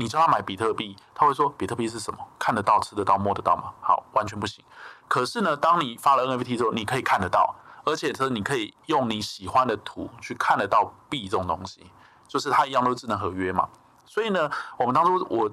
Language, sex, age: Chinese, male, 20-39